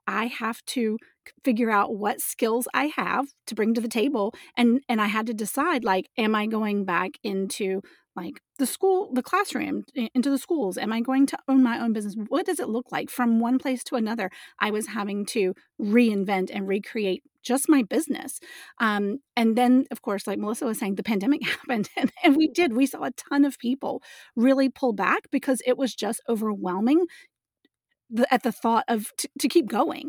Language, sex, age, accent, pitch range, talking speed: English, female, 30-49, American, 210-260 Hz, 200 wpm